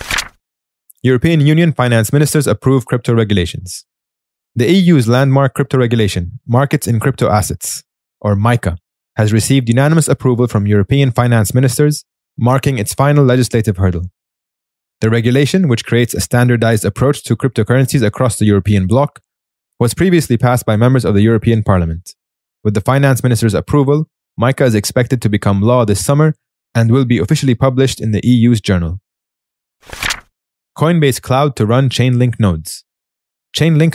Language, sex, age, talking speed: English, male, 20-39, 145 wpm